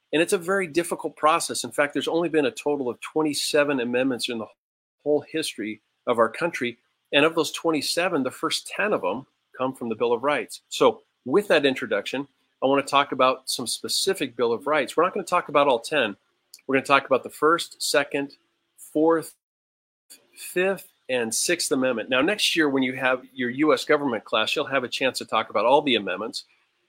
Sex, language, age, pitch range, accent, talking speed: male, English, 40-59, 125-160 Hz, American, 200 wpm